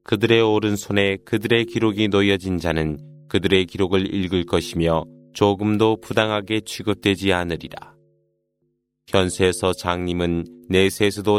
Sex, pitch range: male, 90-110 Hz